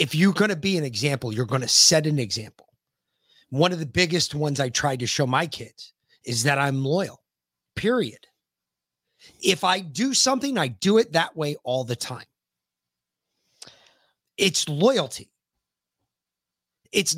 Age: 30-49